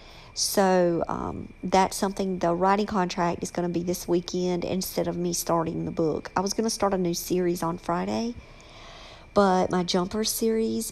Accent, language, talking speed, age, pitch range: American, English, 180 wpm, 50-69, 170-205 Hz